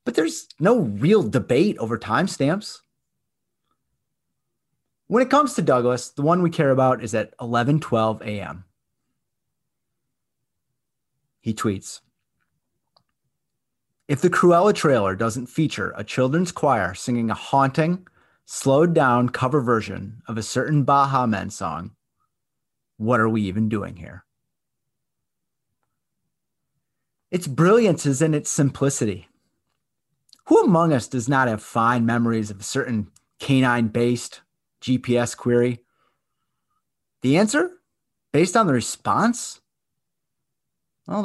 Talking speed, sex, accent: 115 wpm, male, American